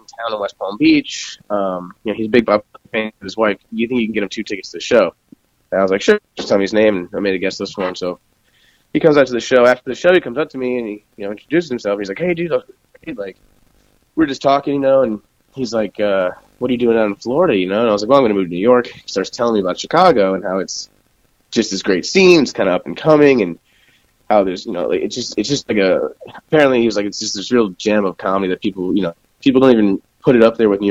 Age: 20-39